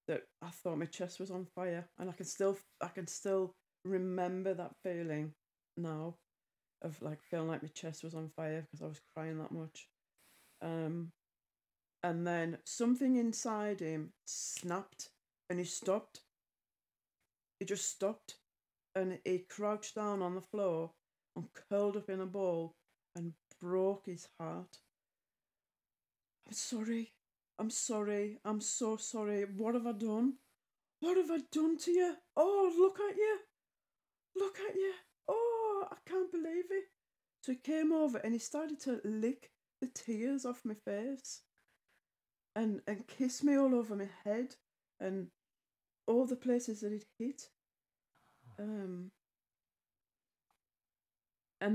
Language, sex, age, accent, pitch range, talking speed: English, female, 30-49, British, 180-245 Hz, 145 wpm